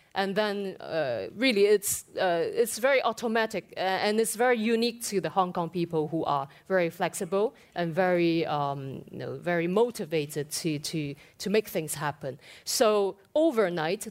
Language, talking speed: English, 155 wpm